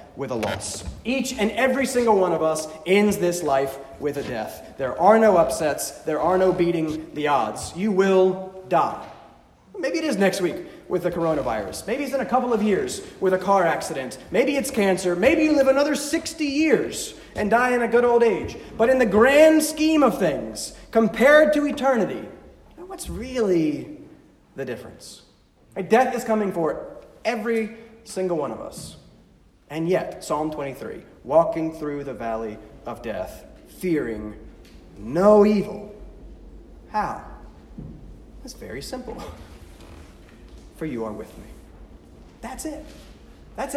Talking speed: 155 wpm